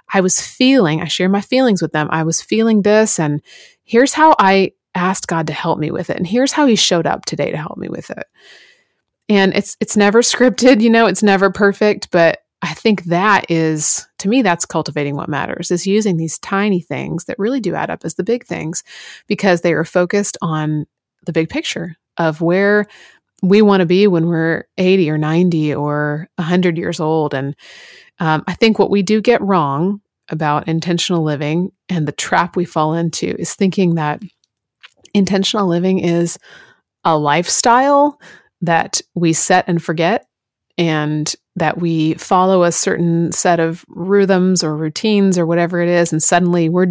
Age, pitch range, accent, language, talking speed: 30-49, 160-205 Hz, American, English, 185 wpm